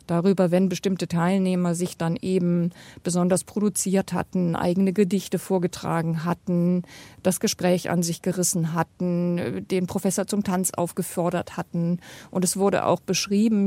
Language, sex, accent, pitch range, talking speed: German, female, German, 175-200 Hz, 135 wpm